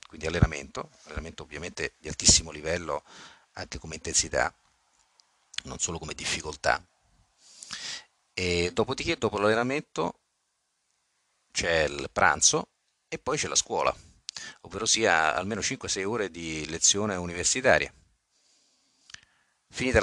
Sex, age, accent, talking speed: male, 40-59, native, 105 wpm